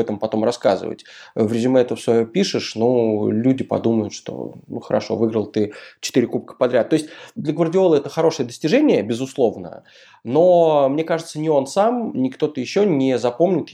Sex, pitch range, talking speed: male, 110-145 Hz, 160 wpm